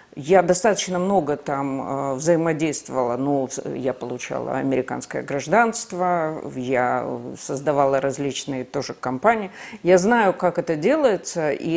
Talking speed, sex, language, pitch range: 105 wpm, female, Russian, 150-210 Hz